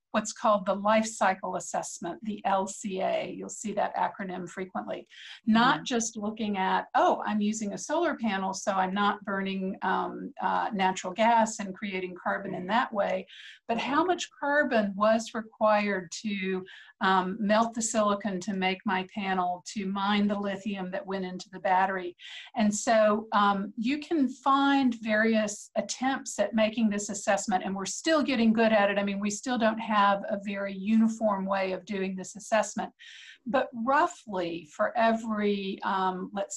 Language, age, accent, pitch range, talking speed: English, 50-69, American, 190-225 Hz, 165 wpm